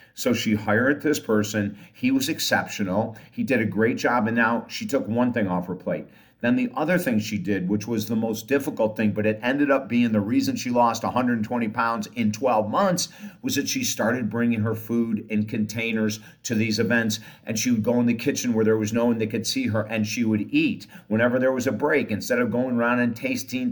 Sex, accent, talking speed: male, American, 230 wpm